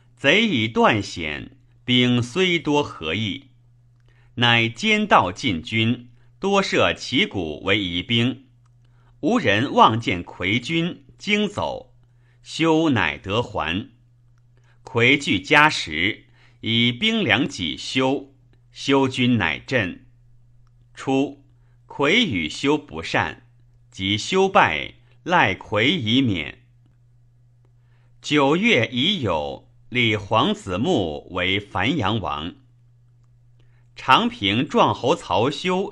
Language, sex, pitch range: Chinese, male, 120-135 Hz